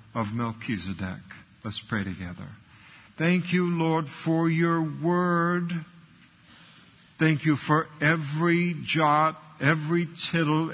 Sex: male